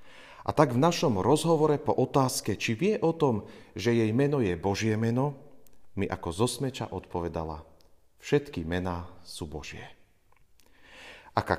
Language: Slovak